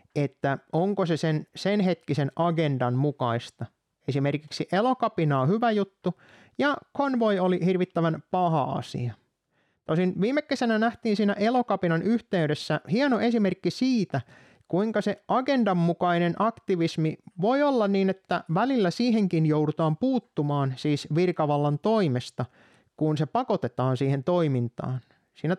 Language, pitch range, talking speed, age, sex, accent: Finnish, 150-205 Hz, 115 wpm, 30-49, male, native